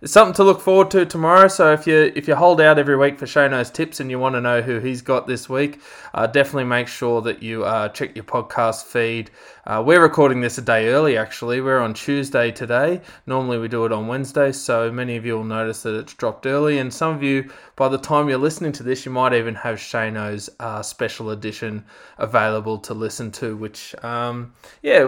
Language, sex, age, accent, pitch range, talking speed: English, male, 20-39, Australian, 120-155 Hz, 225 wpm